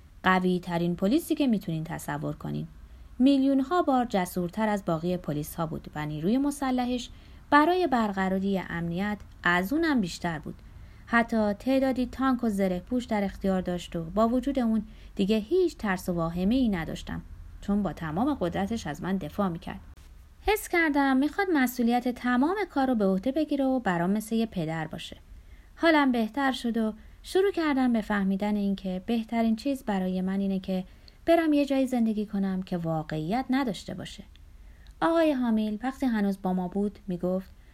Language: Persian